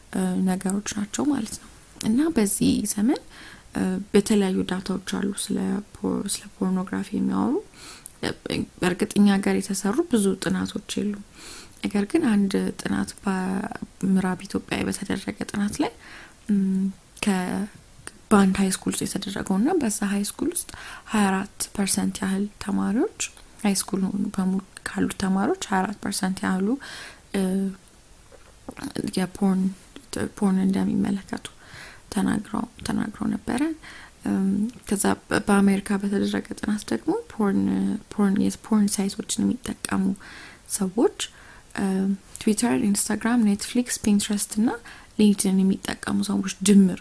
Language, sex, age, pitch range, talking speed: English, female, 20-39, 195-220 Hz, 65 wpm